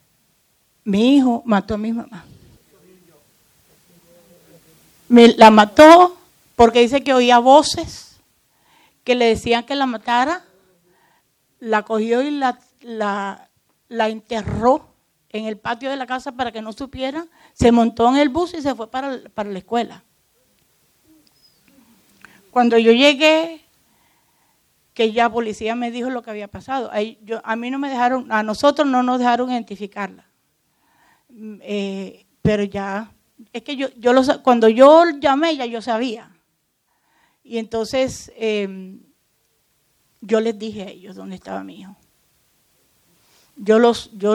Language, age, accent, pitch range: English, 50-69, American, 210-255 Hz